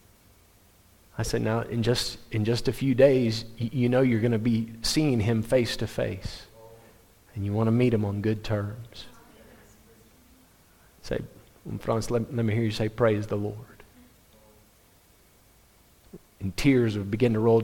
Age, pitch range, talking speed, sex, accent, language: 40-59, 105-125 Hz, 165 wpm, male, American, English